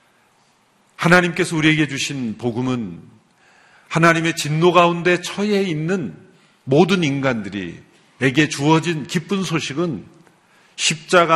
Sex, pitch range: male, 125-165 Hz